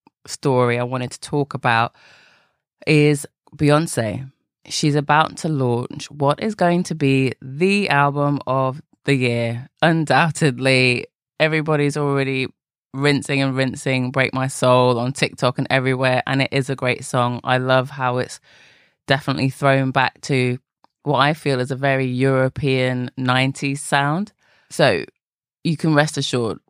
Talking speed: 140 wpm